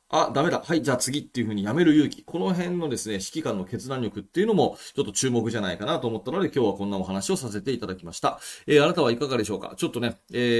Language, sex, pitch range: Japanese, male, 110-145 Hz